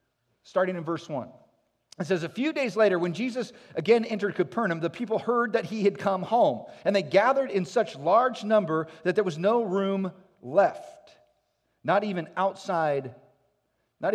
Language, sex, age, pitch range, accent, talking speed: English, male, 40-59, 165-235 Hz, American, 170 wpm